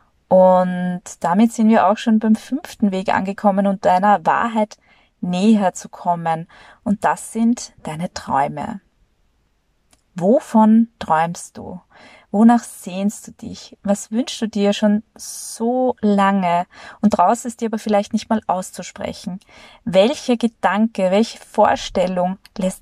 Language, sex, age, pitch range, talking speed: German, female, 20-39, 185-220 Hz, 130 wpm